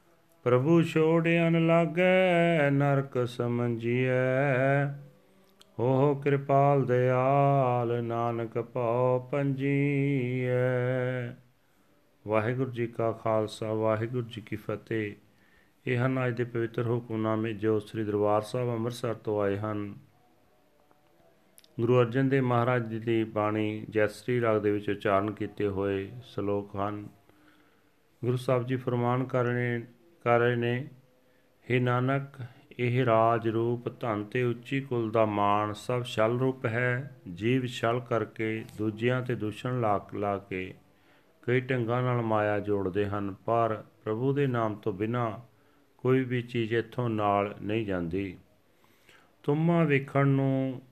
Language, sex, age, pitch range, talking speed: Punjabi, male, 40-59, 110-130 Hz, 125 wpm